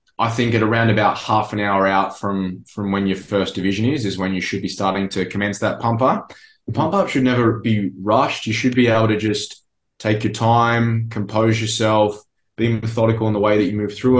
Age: 20-39